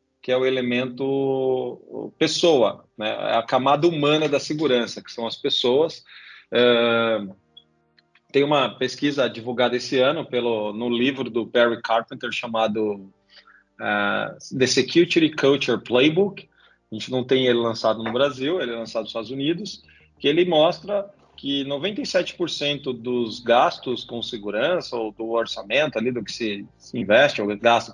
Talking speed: 145 wpm